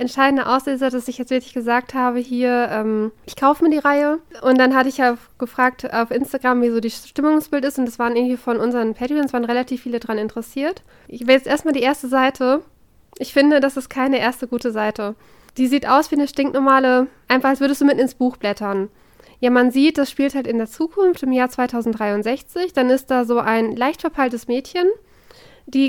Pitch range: 240-275 Hz